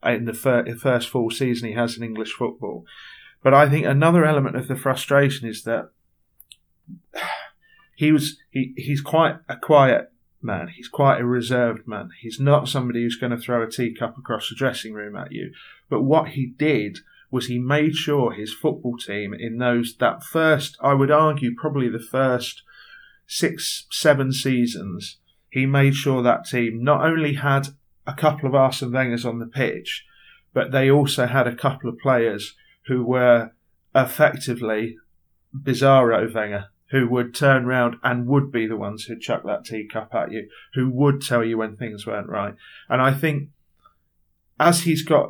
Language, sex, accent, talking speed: English, male, British, 170 wpm